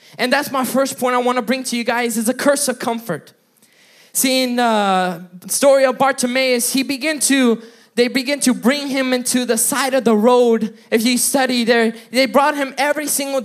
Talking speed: 205 wpm